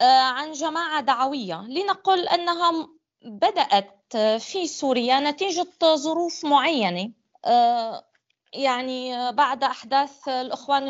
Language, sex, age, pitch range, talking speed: Arabic, female, 20-39, 245-325 Hz, 85 wpm